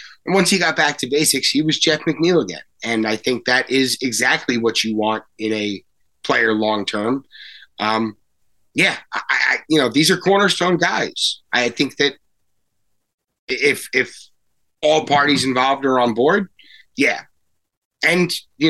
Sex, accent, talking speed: male, American, 155 wpm